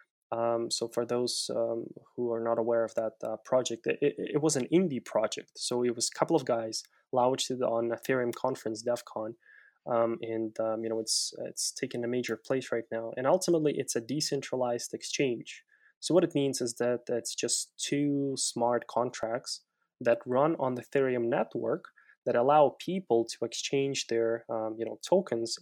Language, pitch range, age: English, 115-130 Hz, 10-29